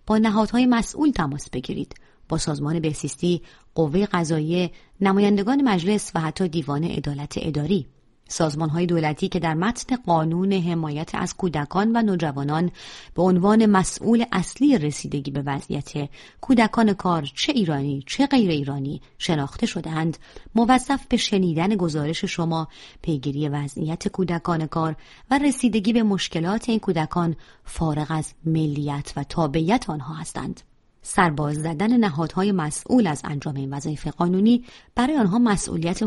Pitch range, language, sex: 155-205 Hz, Persian, female